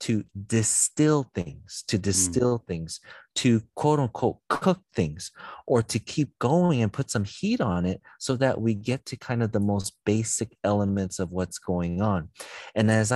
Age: 30-49